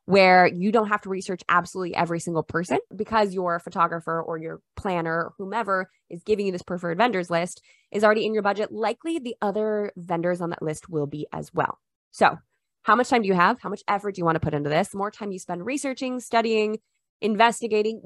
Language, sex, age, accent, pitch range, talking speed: English, female, 20-39, American, 175-235 Hz, 220 wpm